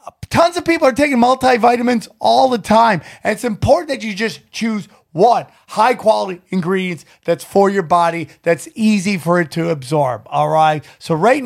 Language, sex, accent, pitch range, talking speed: English, male, American, 150-215 Hz, 175 wpm